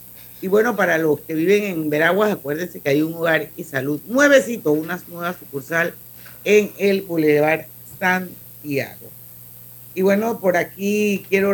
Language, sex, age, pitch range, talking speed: Spanish, female, 50-69, 145-185 Hz, 145 wpm